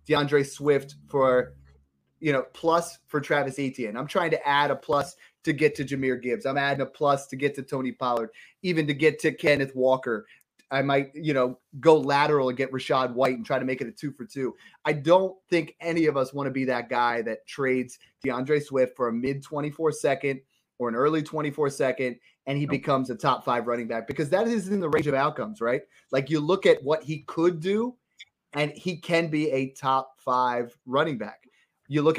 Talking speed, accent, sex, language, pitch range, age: 215 wpm, American, male, English, 130-155 Hz, 30-49